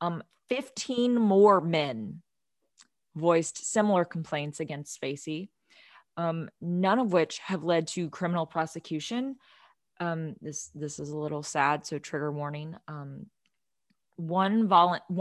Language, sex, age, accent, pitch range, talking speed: English, female, 20-39, American, 155-180 Hz, 120 wpm